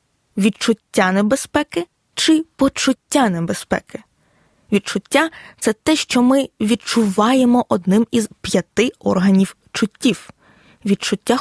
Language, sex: Ukrainian, female